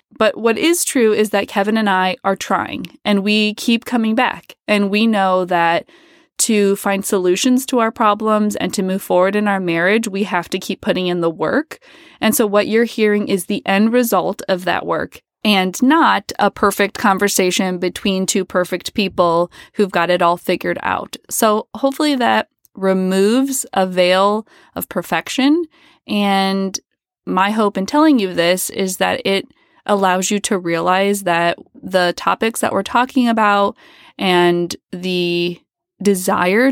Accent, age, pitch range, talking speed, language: American, 20-39, 185-235 Hz, 165 wpm, English